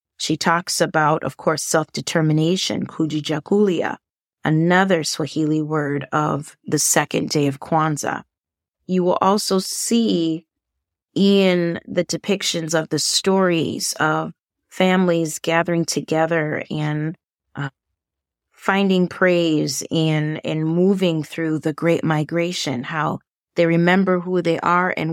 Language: English